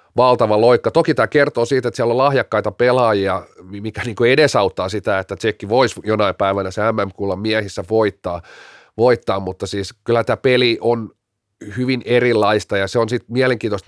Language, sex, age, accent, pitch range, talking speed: Finnish, male, 30-49, native, 105-130 Hz, 160 wpm